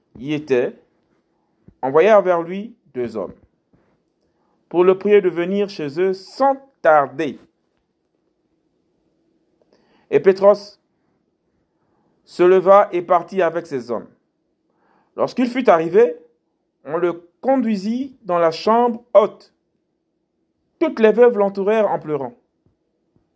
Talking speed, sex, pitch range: 105 wpm, male, 165-225 Hz